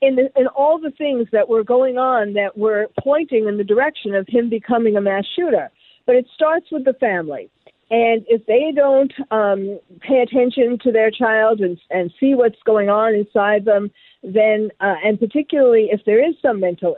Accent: American